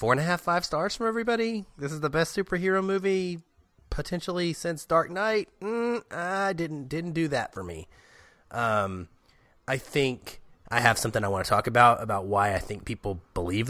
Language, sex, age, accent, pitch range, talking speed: English, male, 30-49, American, 95-135 Hz, 190 wpm